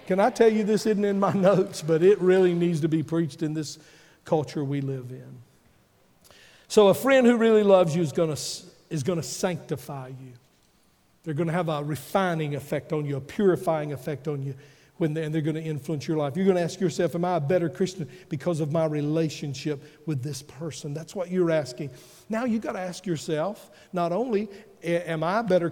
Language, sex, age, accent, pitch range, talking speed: English, male, 50-69, American, 155-195 Hz, 215 wpm